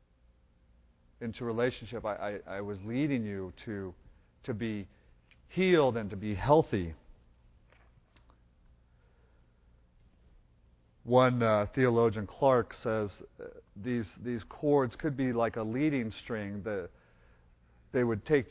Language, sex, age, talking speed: English, male, 40-59, 115 wpm